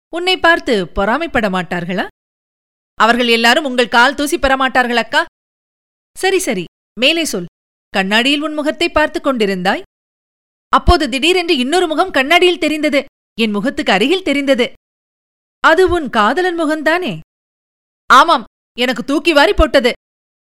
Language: Tamil